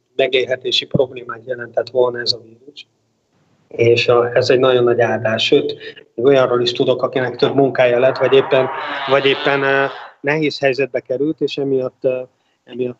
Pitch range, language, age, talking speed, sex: 120-140 Hz, Hungarian, 30-49, 150 wpm, male